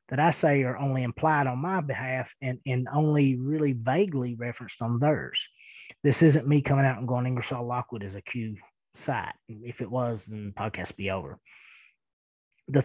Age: 30-49